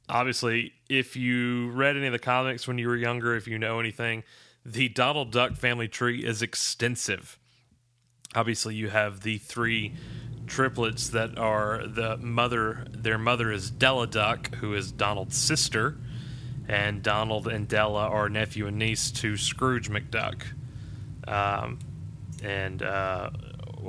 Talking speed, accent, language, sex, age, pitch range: 140 wpm, American, English, male, 30-49, 105-125 Hz